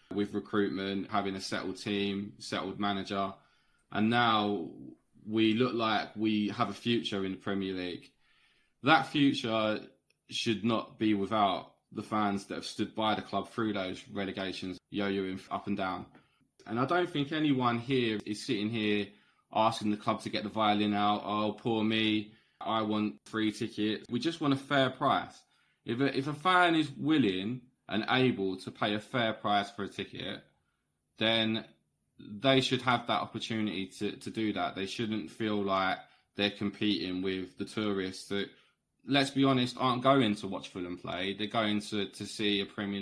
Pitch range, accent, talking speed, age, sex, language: 100-115 Hz, British, 175 wpm, 20-39, male, English